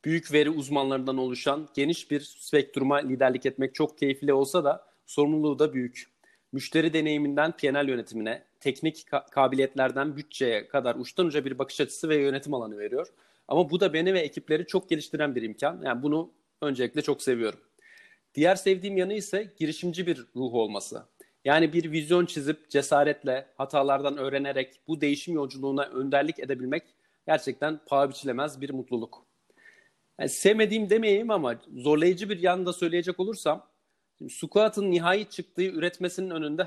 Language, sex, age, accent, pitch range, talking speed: Turkish, male, 40-59, native, 140-180 Hz, 145 wpm